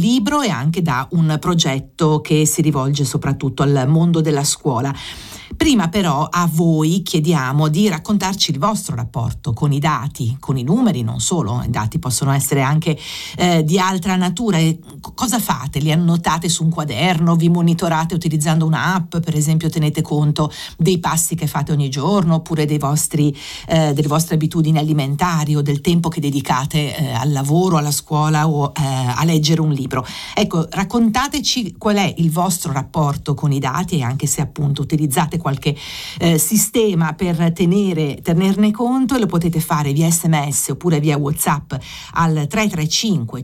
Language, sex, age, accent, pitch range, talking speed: Italian, female, 50-69, native, 150-180 Hz, 165 wpm